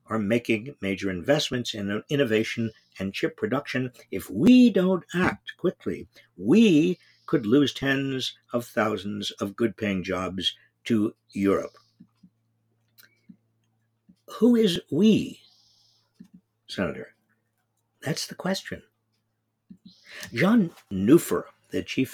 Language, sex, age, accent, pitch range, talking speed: English, male, 60-79, American, 110-155 Hz, 100 wpm